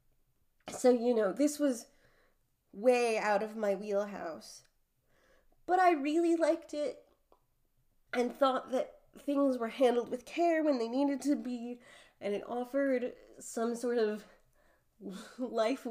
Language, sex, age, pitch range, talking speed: English, female, 30-49, 200-255 Hz, 130 wpm